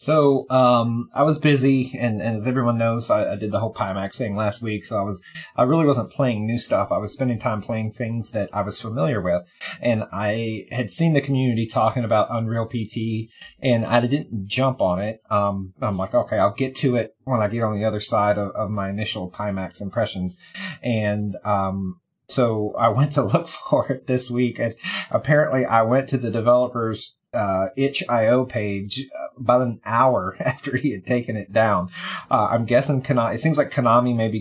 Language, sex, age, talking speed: English, male, 30-49, 200 wpm